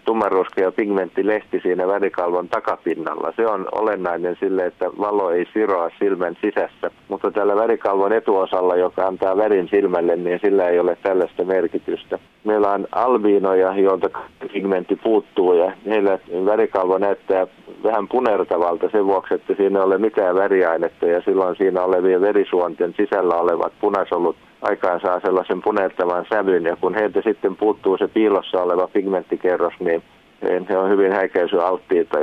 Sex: male